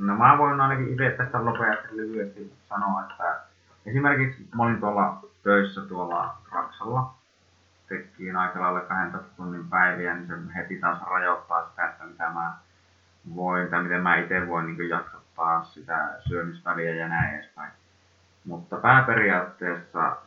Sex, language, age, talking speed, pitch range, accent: male, Finnish, 20-39, 125 wpm, 85-100 Hz, native